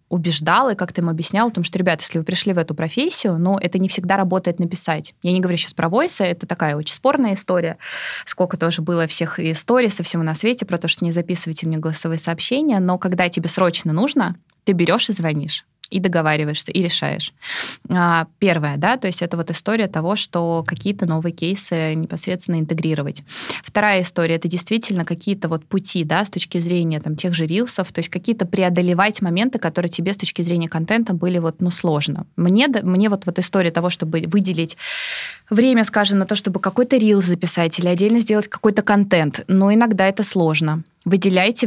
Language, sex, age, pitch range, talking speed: Russian, female, 20-39, 170-200 Hz, 195 wpm